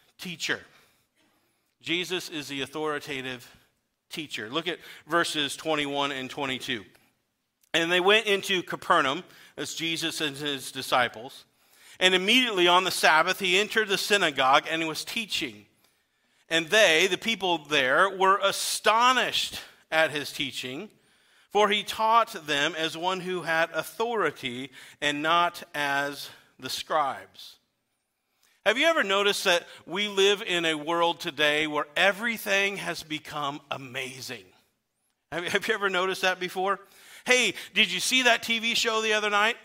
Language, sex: English, male